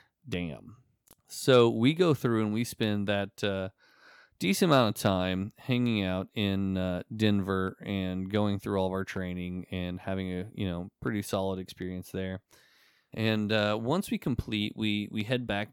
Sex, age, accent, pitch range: male, 20-39, American, 90-105 Hz